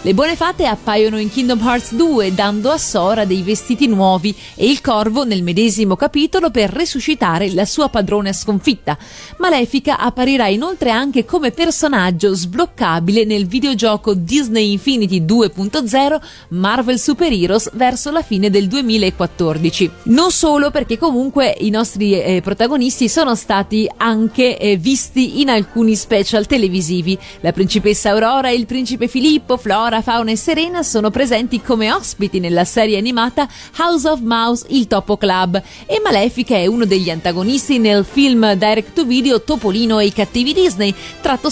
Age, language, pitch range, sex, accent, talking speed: 30-49, Italian, 200-270 Hz, female, native, 145 wpm